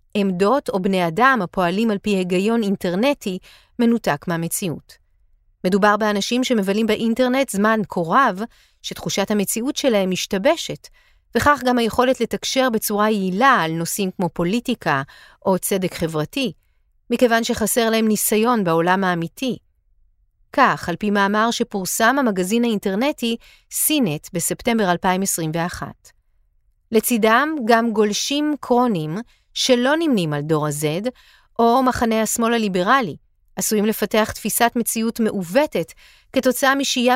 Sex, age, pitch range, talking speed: female, 40-59, 180-245 Hz, 115 wpm